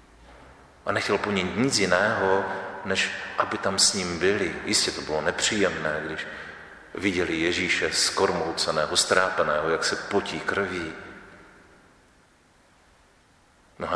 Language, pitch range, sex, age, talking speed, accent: Czech, 80-90 Hz, male, 40-59, 105 wpm, native